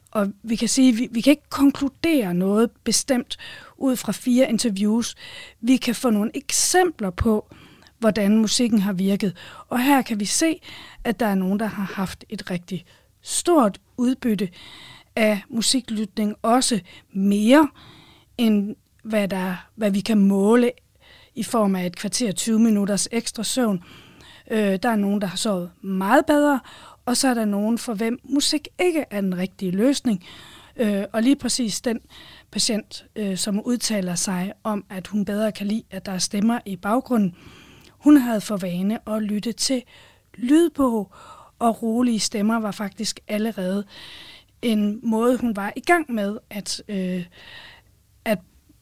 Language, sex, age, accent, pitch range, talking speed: Danish, female, 40-59, native, 200-245 Hz, 150 wpm